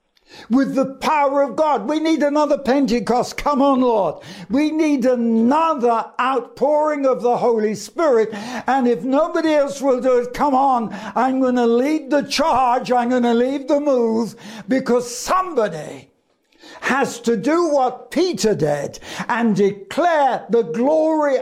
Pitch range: 210-275 Hz